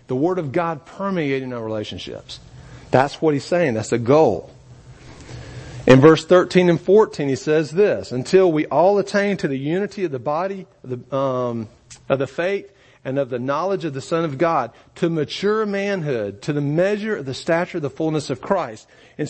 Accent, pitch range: American, 125-180 Hz